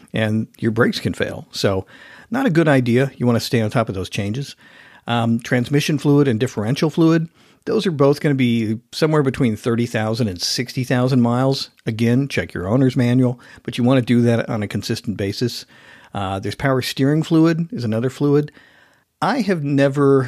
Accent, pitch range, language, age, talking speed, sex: American, 110-135 Hz, English, 50-69, 185 wpm, male